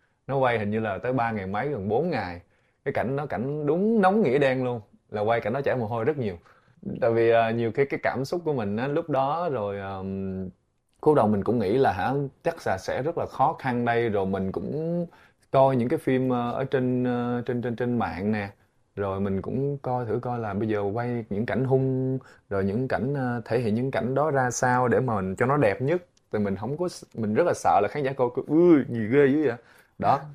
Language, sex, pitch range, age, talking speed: Vietnamese, male, 105-135 Hz, 20-39, 245 wpm